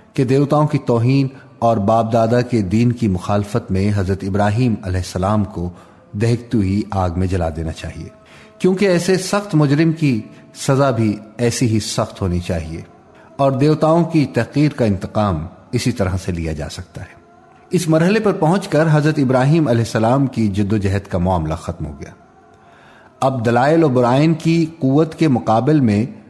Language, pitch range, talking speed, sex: Urdu, 100-155 Hz, 175 wpm, male